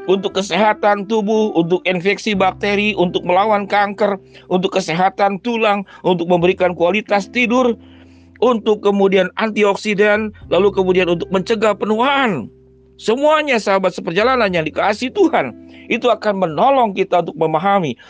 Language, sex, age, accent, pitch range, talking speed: Indonesian, male, 40-59, native, 165-220 Hz, 120 wpm